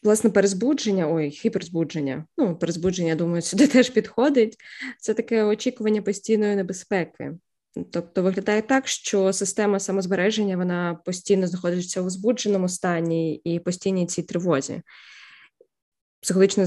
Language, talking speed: Ukrainian, 115 wpm